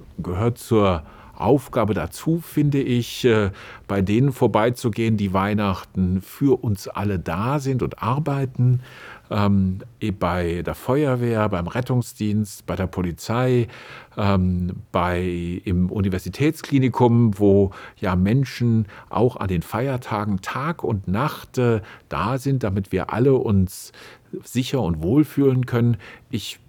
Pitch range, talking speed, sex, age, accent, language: 95-120 Hz, 120 wpm, male, 50-69, German, German